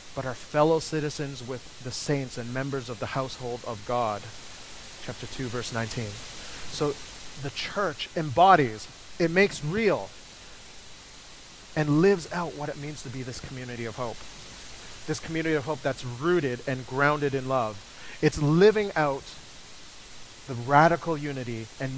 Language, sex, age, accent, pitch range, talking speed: English, male, 30-49, American, 125-155 Hz, 145 wpm